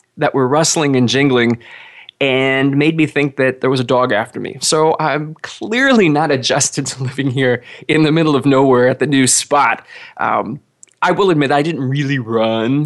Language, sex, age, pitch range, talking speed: English, male, 20-39, 120-150 Hz, 190 wpm